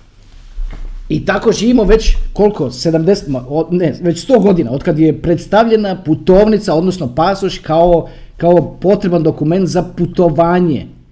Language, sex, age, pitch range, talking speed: Croatian, male, 30-49, 160-220 Hz, 120 wpm